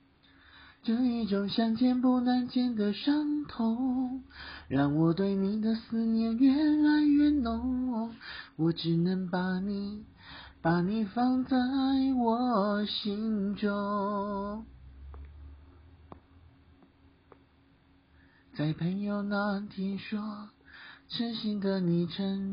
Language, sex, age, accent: Chinese, male, 40-59, native